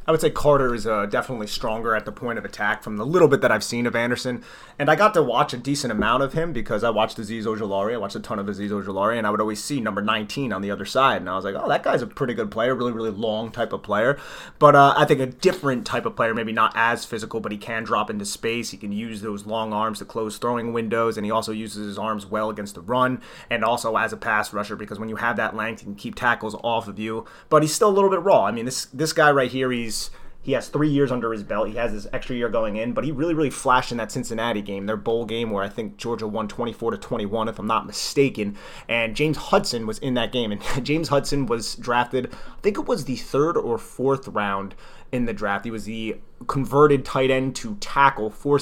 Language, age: English, 30-49